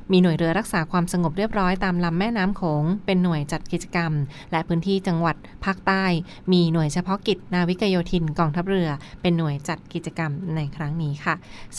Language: Thai